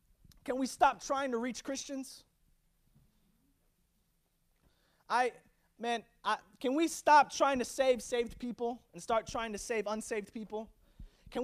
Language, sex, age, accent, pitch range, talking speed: English, male, 20-39, American, 205-290 Hz, 130 wpm